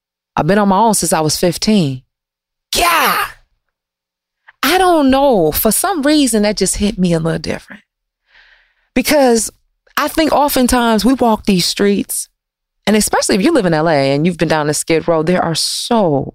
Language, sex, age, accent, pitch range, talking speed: English, female, 30-49, American, 180-280 Hz, 175 wpm